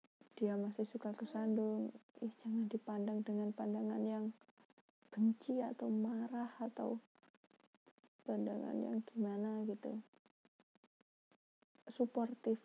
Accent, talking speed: native, 90 wpm